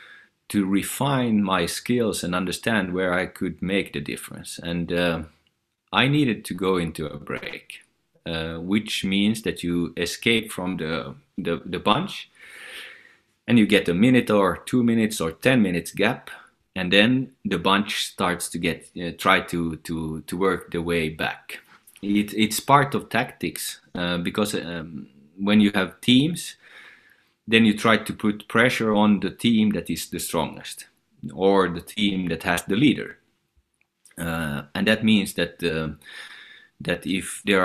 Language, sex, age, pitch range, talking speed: Finnish, male, 30-49, 85-110 Hz, 160 wpm